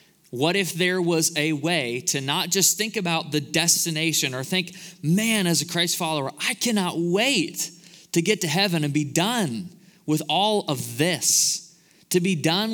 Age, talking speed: 20-39, 175 wpm